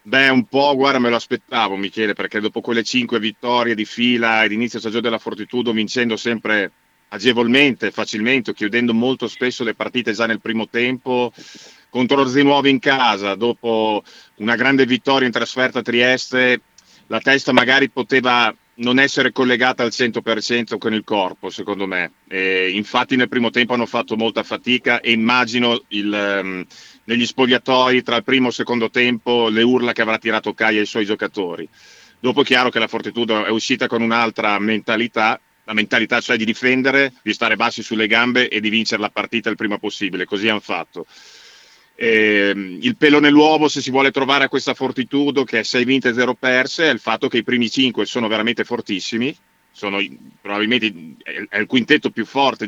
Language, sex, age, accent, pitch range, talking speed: Italian, male, 40-59, native, 110-125 Hz, 175 wpm